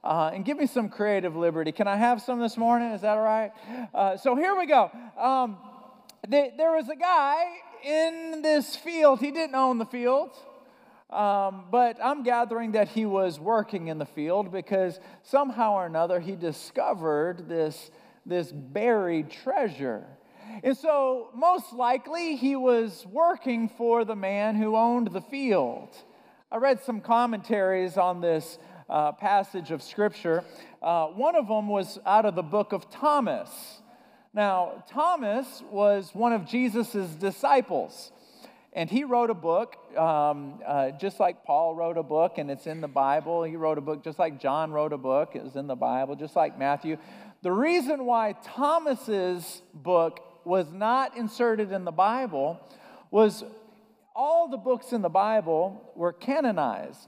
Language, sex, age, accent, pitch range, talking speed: English, male, 40-59, American, 175-255 Hz, 160 wpm